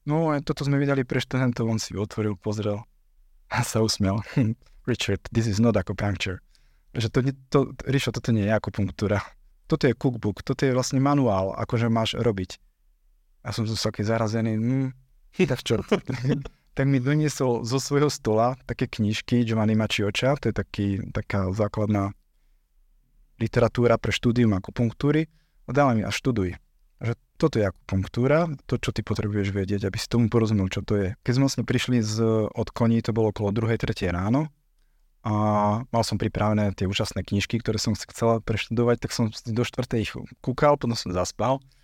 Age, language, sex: 20-39, Slovak, male